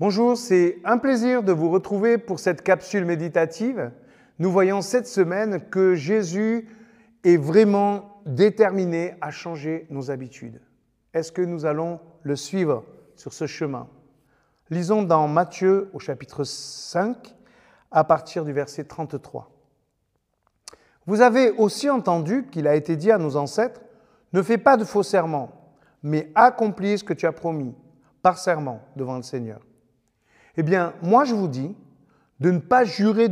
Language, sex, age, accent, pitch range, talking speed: French, male, 50-69, French, 155-215 Hz, 155 wpm